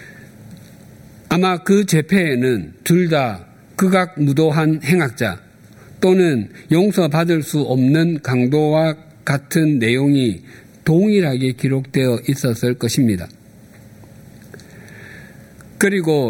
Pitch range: 115-165 Hz